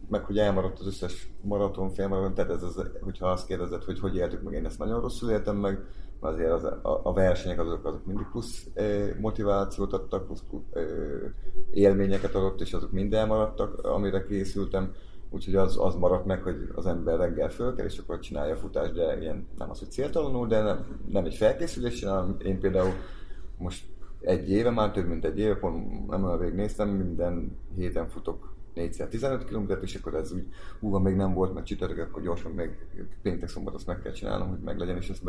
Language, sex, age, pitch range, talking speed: Hungarian, male, 30-49, 90-100 Hz, 195 wpm